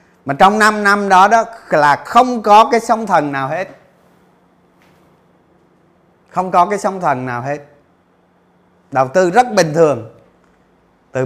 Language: Vietnamese